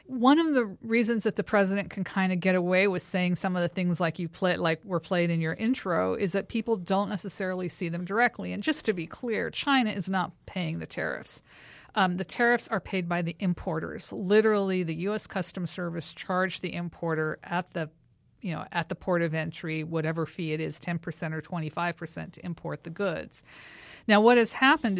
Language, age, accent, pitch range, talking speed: English, 50-69, American, 175-210 Hz, 205 wpm